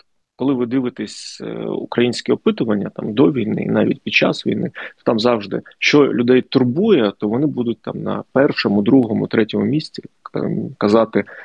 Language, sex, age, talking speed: Ukrainian, male, 30-49, 150 wpm